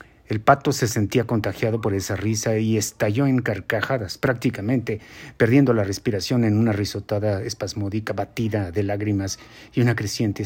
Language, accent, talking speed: Spanish, Mexican, 150 wpm